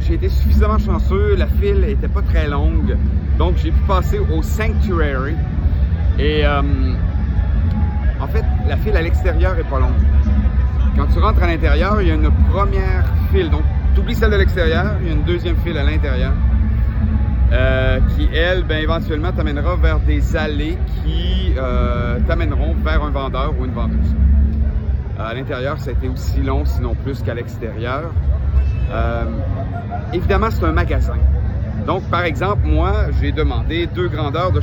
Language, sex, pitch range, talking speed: French, male, 75-85 Hz, 165 wpm